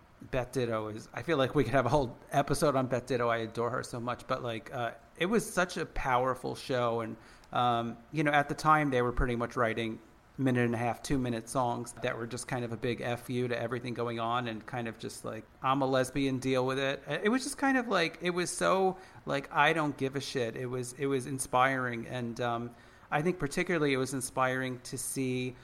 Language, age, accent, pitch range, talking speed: English, 40-59, American, 120-140 Hz, 240 wpm